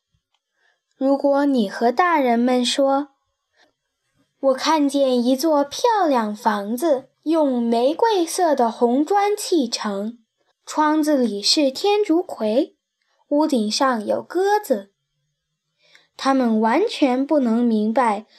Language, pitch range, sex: Chinese, 225-330 Hz, female